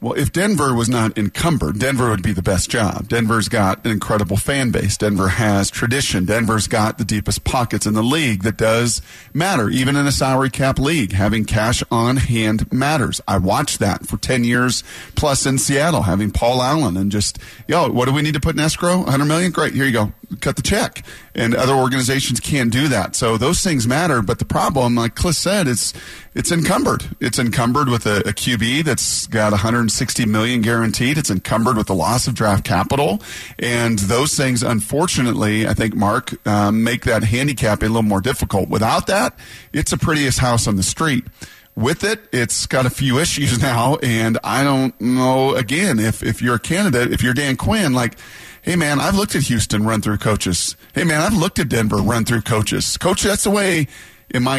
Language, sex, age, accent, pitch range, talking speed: English, male, 40-59, American, 110-135 Hz, 200 wpm